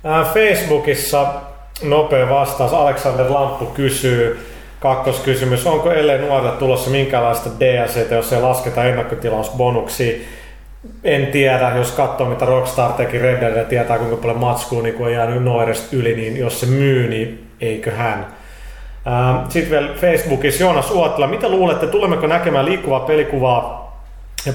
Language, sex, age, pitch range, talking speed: Finnish, male, 30-49, 120-140 Hz, 125 wpm